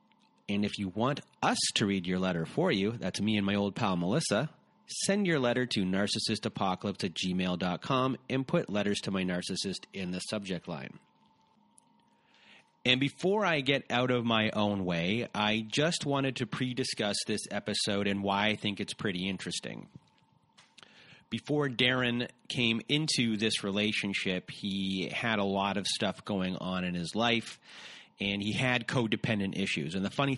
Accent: American